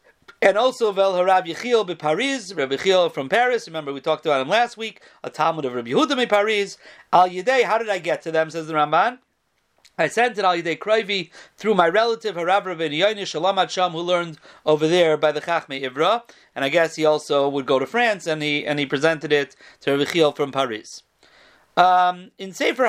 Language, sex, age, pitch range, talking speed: English, male, 40-59, 160-210 Hz, 185 wpm